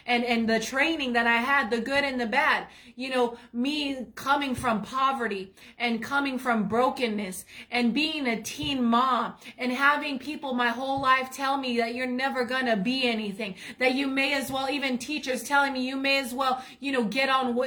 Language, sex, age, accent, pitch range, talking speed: English, female, 30-49, American, 240-275 Hz, 200 wpm